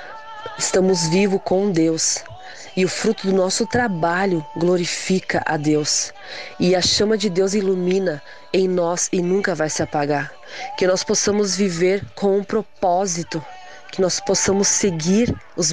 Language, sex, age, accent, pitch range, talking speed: Portuguese, female, 20-39, Brazilian, 170-200 Hz, 145 wpm